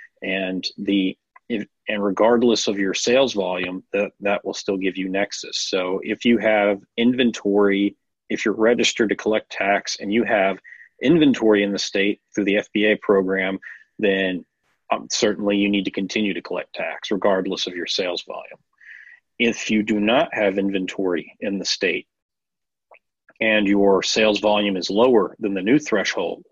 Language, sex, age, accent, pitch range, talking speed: English, male, 40-59, American, 95-105 Hz, 165 wpm